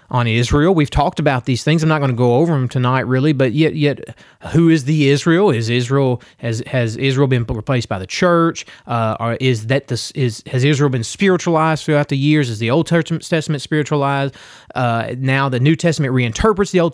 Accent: American